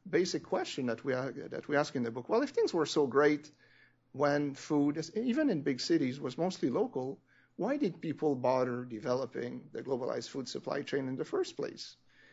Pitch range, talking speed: 130-180 Hz, 185 wpm